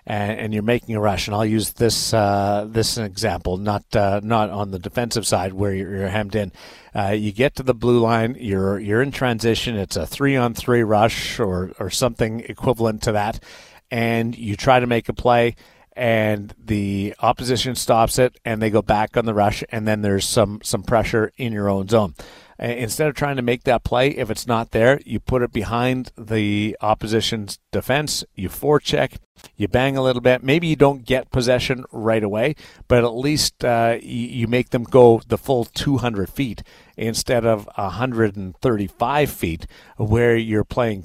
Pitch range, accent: 105-125 Hz, American